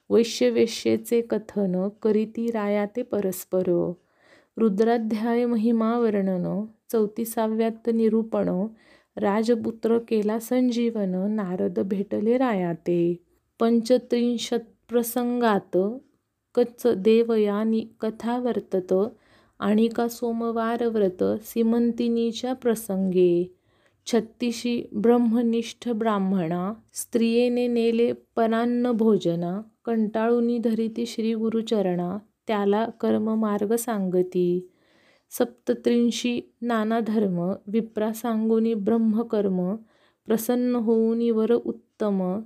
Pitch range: 205-235 Hz